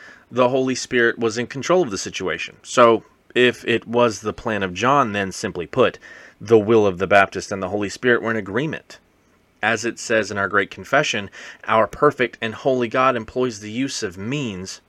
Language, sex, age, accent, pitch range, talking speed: English, male, 30-49, American, 110-135 Hz, 200 wpm